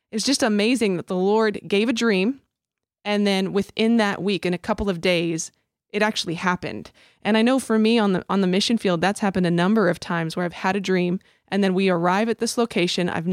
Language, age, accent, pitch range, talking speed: English, 20-39, American, 180-210 Hz, 235 wpm